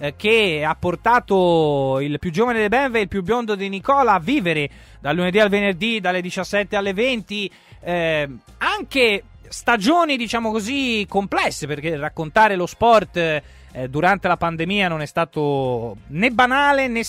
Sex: male